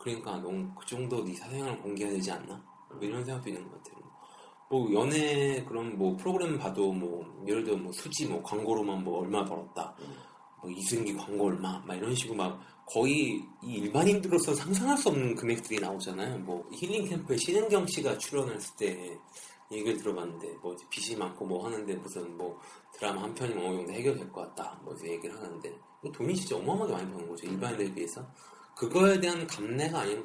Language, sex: Korean, male